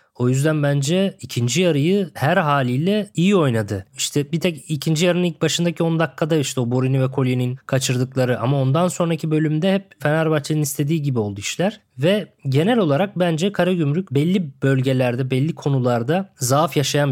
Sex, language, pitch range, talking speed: male, Turkish, 135-170 Hz, 160 wpm